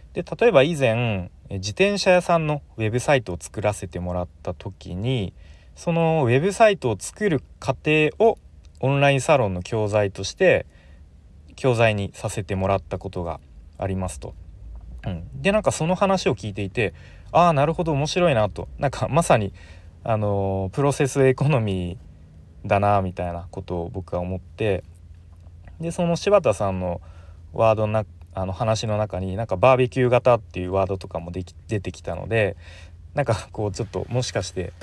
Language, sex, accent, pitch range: Japanese, male, native, 90-130 Hz